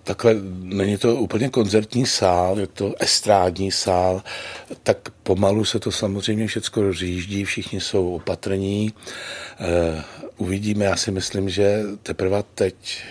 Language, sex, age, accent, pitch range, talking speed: Czech, male, 60-79, native, 95-110 Hz, 130 wpm